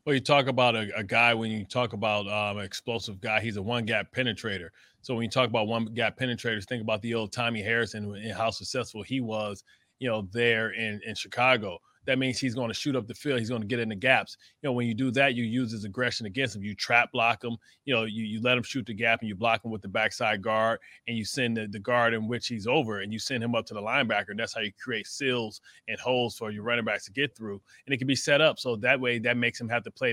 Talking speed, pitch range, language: 280 wpm, 110-125 Hz, English